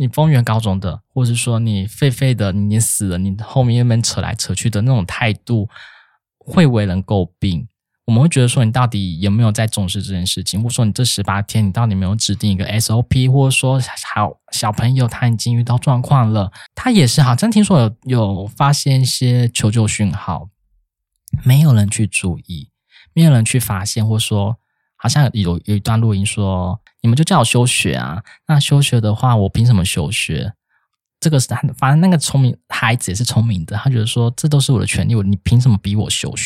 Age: 20-39